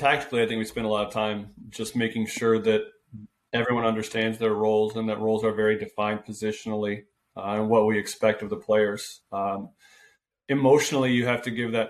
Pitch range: 110-125 Hz